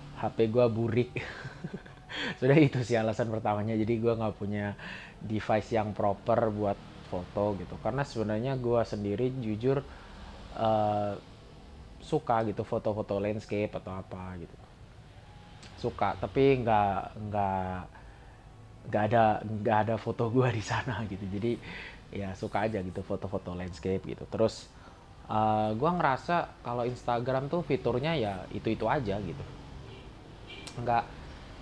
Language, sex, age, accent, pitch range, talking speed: Indonesian, male, 20-39, native, 105-125 Hz, 125 wpm